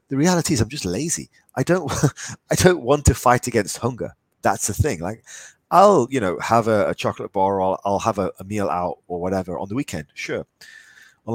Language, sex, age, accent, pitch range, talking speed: English, male, 30-49, British, 95-135 Hz, 220 wpm